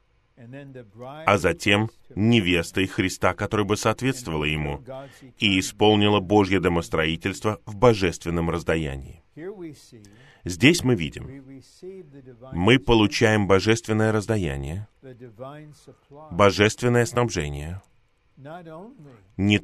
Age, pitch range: 30-49, 95-130 Hz